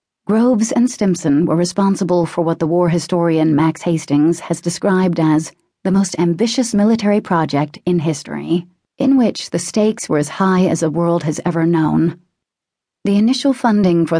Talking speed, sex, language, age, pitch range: 165 wpm, female, English, 30-49, 155-185 Hz